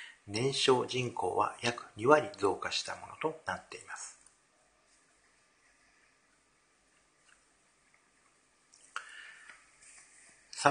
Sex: male